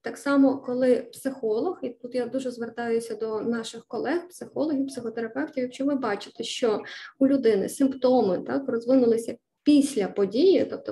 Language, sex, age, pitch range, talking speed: Ukrainian, female, 20-39, 225-270 Hz, 145 wpm